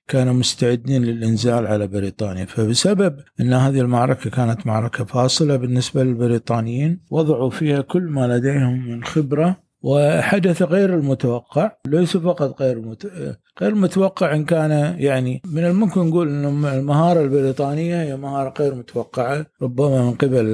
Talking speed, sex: 135 wpm, male